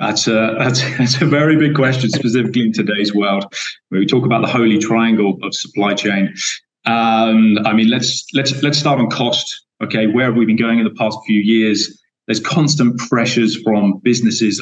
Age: 20-39